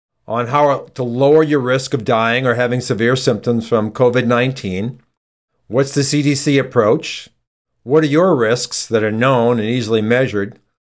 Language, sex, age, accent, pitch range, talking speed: English, male, 50-69, American, 115-145 Hz, 155 wpm